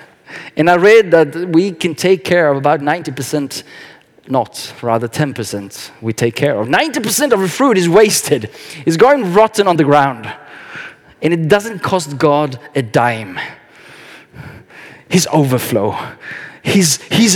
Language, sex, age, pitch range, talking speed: Swedish, male, 30-49, 160-235 Hz, 140 wpm